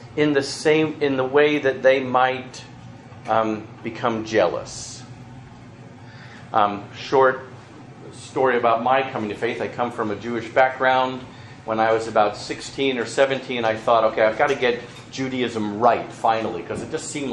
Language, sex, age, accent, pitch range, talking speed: English, male, 40-59, American, 115-135 Hz, 160 wpm